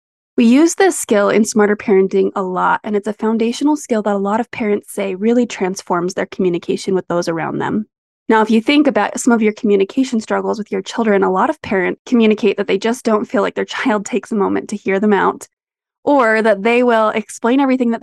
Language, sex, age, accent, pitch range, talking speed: English, female, 20-39, American, 195-240 Hz, 225 wpm